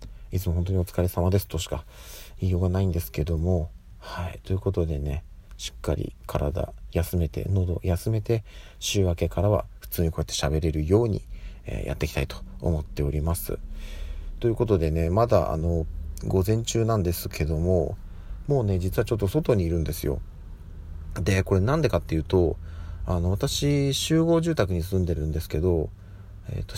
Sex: male